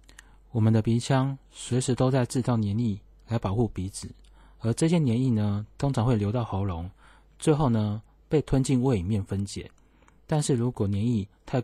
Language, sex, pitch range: Chinese, male, 100-125 Hz